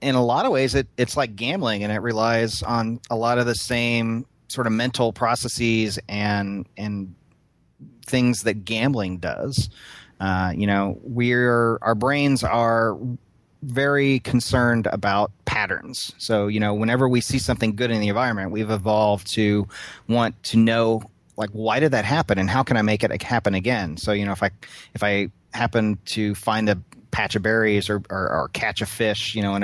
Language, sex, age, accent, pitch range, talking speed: English, male, 30-49, American, 100-120 Hz, 180 wpm